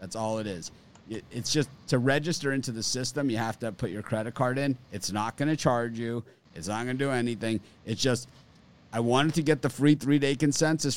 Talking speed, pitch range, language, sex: 225 wpm, 100-130 Hz, English, male